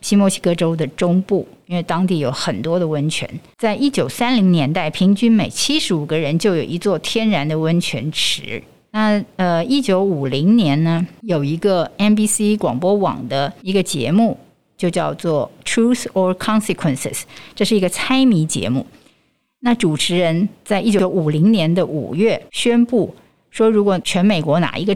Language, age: Chinese, 50-69